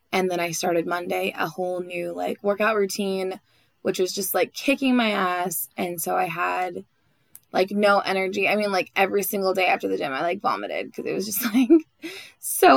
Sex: female